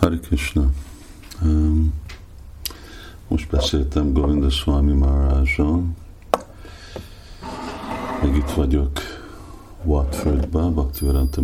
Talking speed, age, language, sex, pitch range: 65 wpm, 50-69, Hungarian, male, 70-85 Hz